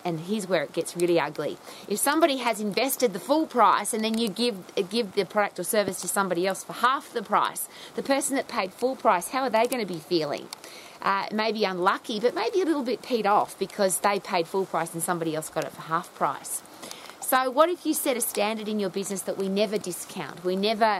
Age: 30-49